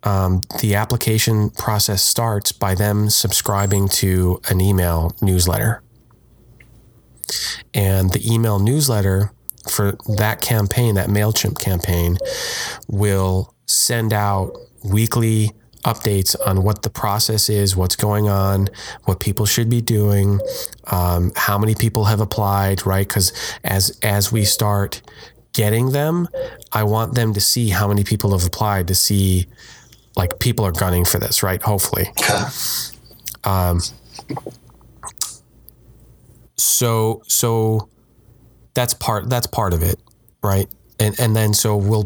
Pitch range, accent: 95-115 Hz, American